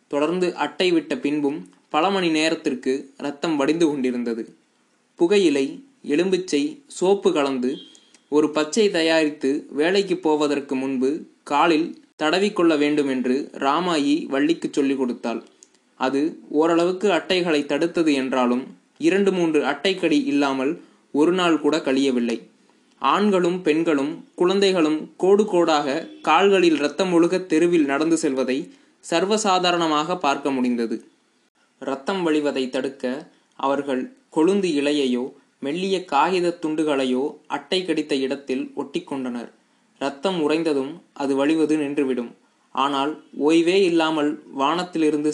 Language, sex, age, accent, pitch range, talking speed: Tamil, male, 20-39, native, 140-175 Hz, 100 wpm